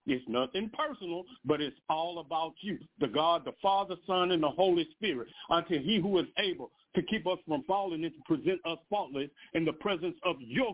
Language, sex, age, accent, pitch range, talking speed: English, male, 50-69, American, 165-255 Hz, 205 wpm